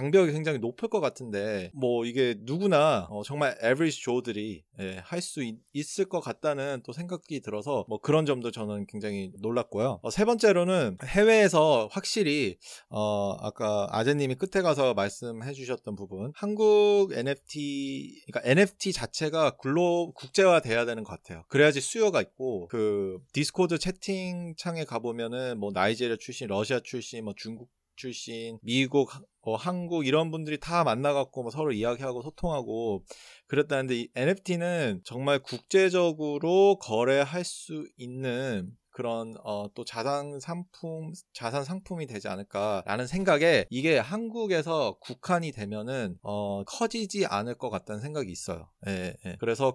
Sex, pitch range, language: male, 115-175 Hz, Korean